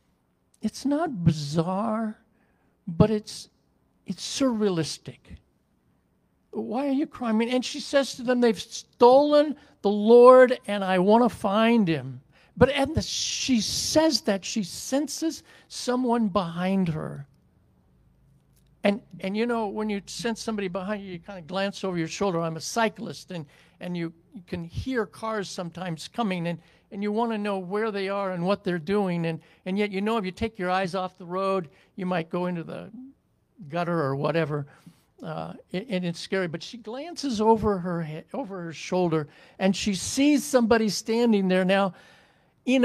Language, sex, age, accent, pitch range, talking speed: English, male, 60-79, American, 175-230 Hz, 165 wpm